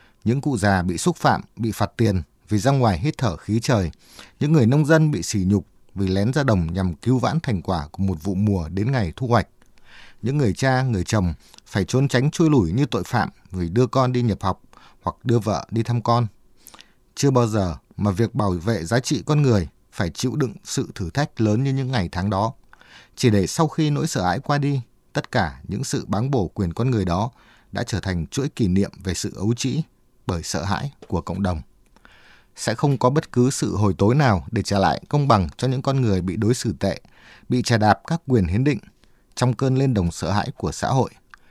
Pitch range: 100-135 Hz